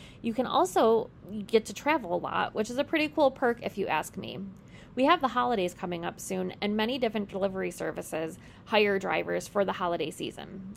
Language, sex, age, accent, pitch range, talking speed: English, female, 20-39, American, 190-255 Hz, 200 wpm